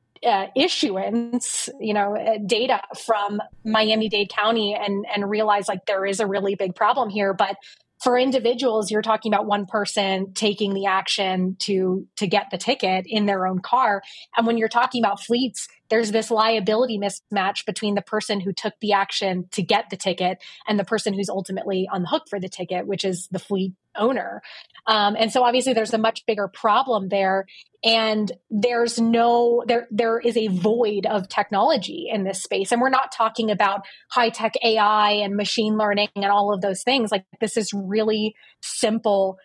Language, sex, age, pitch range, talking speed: English, female, 20-39, 195-230 Hz, 185 wpm